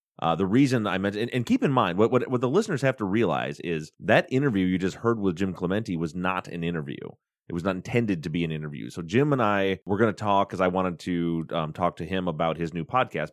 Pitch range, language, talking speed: 85-115 Hz, English, 265 wpm